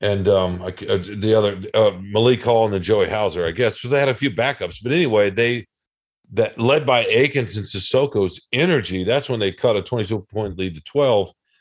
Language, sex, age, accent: English, male, 40-59, American